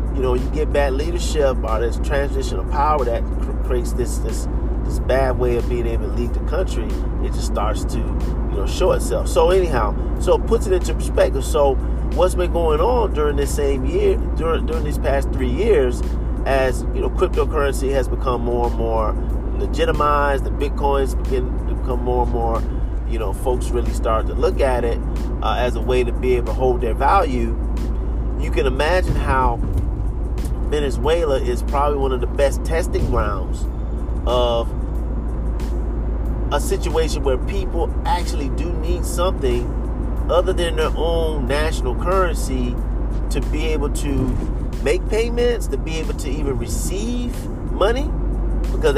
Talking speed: 170 wpm